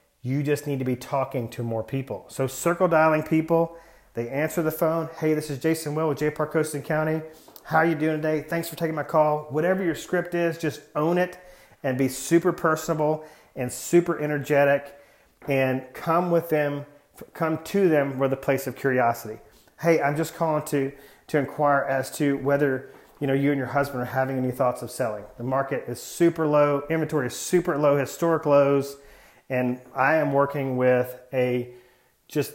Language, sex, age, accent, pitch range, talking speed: English, male, 40-59, American, 130-160 Hz, 190 wpm